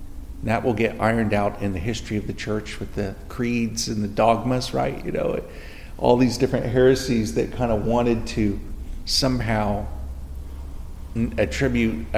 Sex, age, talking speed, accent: male, 50-69, 155 wpm, American